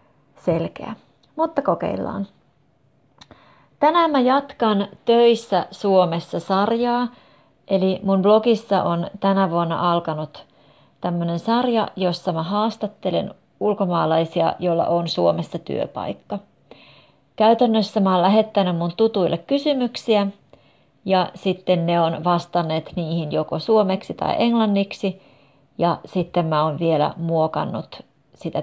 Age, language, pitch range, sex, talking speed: 30-49, Finnish, 160-210 Hz, female, 105 wpm